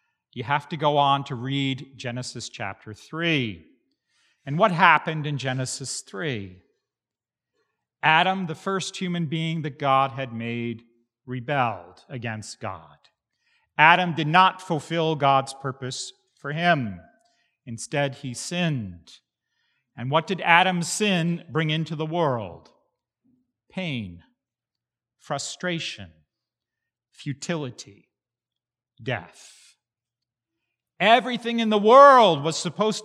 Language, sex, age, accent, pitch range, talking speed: English, male, 40-59, American, 125-180 Hz, 105 wpm